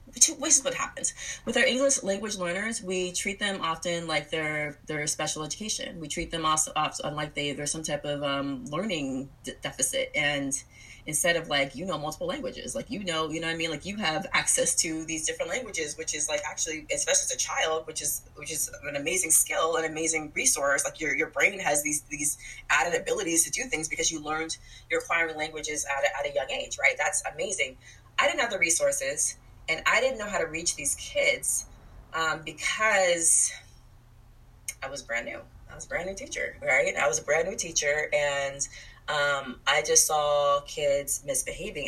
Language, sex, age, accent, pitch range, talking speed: English, female, 20-39, American, 140-210 Hz, 205 wpm